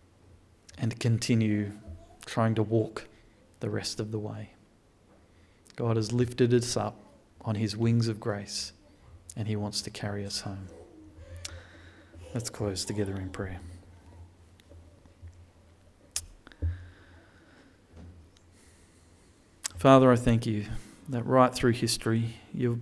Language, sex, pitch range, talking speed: English, male, 90-120 Hz, 110 wpm